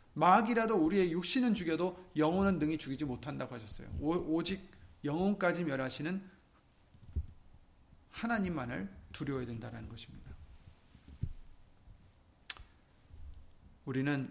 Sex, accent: male, native